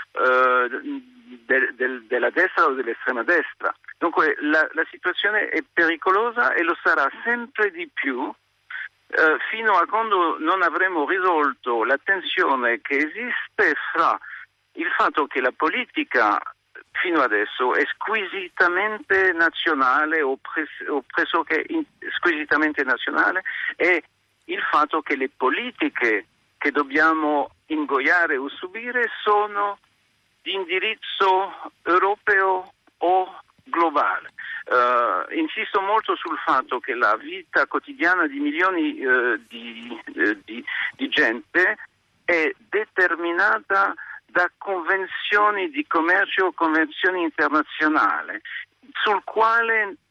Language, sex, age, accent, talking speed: Italian, male, 50-69, native, 115 wpm